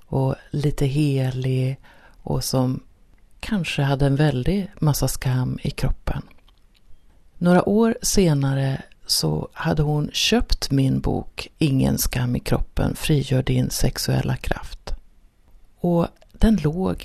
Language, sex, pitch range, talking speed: Swedish, female, 130-170 Hz, 115 wpm